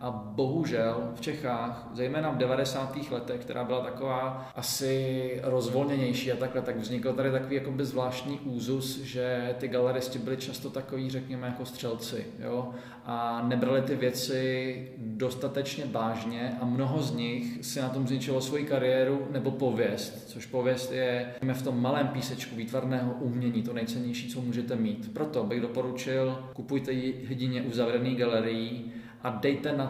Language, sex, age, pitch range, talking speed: Czech, male, 20-39, 125-135 Hz, 145 wpm